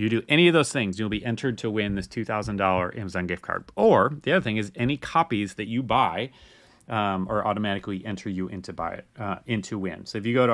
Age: 30-49